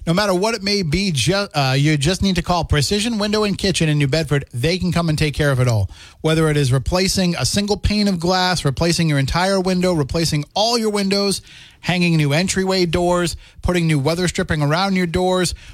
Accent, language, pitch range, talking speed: American, English, 140-180 Hz, 215 wpm